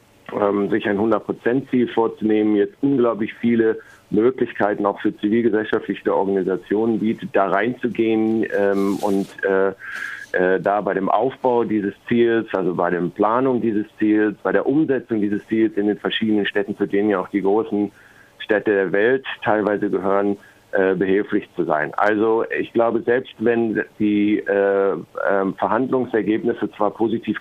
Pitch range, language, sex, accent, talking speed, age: 95-110 Hz, German, male, German, 135 wpm, 50-69